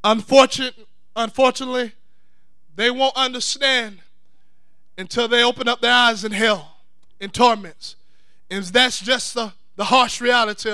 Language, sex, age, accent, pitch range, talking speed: English, male, 20-39, American, 210-260 Hz, 125 wpm